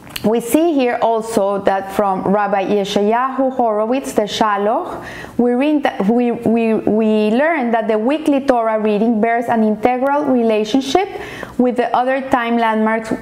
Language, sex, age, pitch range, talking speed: English, female, 30-49, 215-255 Hz, 125 wpm